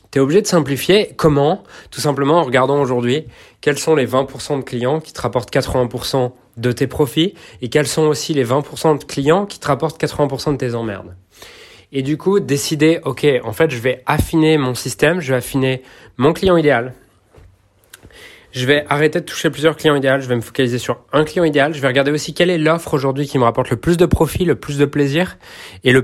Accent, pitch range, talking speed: French, 115-145 Hz, 215 wpm